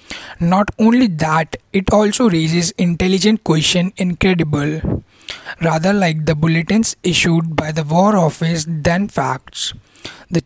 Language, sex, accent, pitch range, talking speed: English, male, Indian, 160-190 Hz, 120 wpm